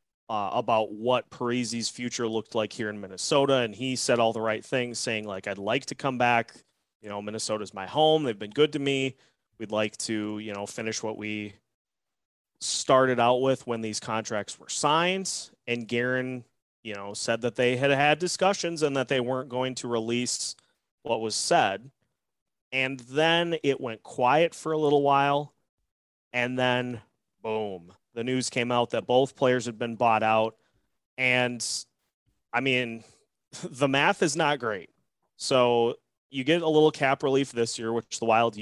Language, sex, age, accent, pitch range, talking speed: English, male, 30-49, American, 110-135 Hz, 175 wpm